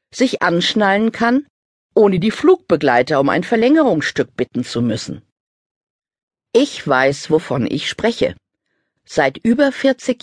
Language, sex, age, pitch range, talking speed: German, female, 50-69, 140-225 Hz, 115 wpm